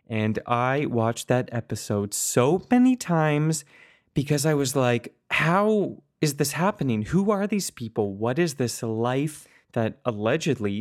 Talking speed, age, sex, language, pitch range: 145 wpm, 20-39, male, English, 110-145 Hz